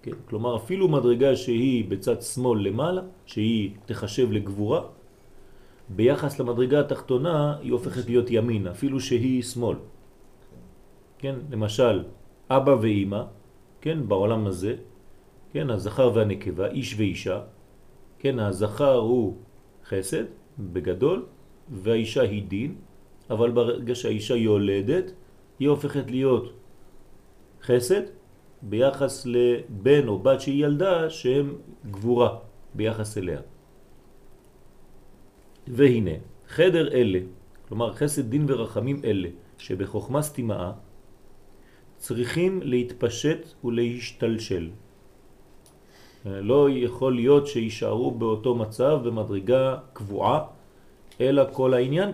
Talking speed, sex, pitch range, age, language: 90 wpm, male, 105-135 Hz, 40-59, French